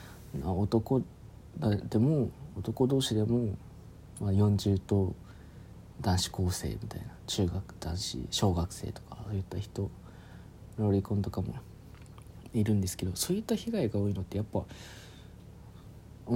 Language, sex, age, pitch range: Japanese, male, 40-59, 90-110 Hz